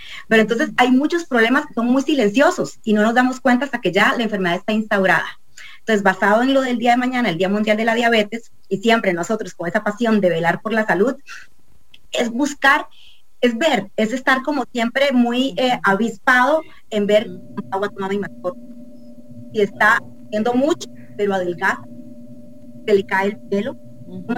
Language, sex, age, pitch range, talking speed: English, female, 30-49, 200-250 Hz, 180 wpm